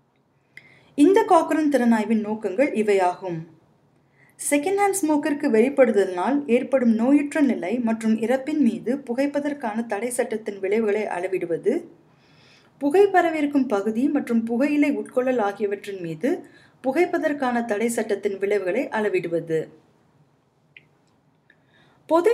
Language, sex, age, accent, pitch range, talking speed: Tamil, female, 20-39, native, 205-285 Hz, 80 wpm